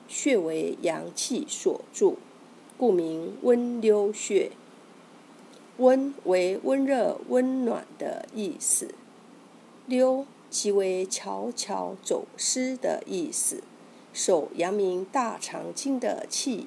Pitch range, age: 215-275 Hz, 50-69